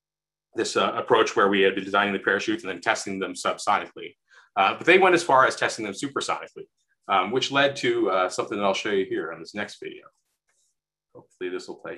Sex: male